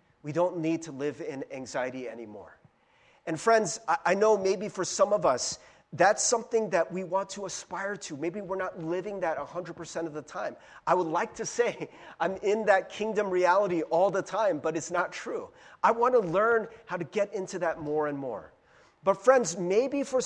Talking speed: 200 wpm